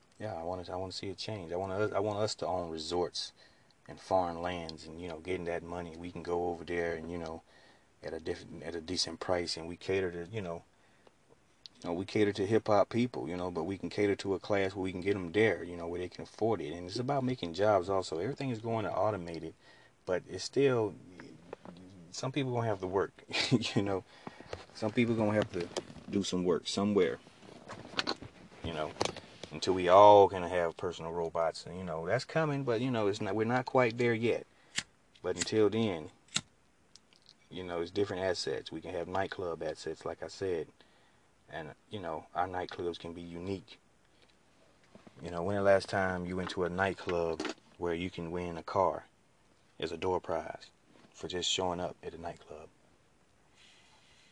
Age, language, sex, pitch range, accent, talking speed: 30-49, English, male, 85-105 Hz, American, 210 wpm